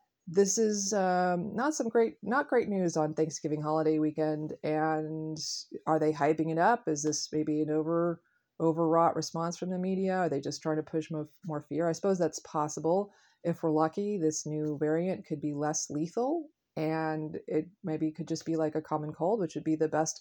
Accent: American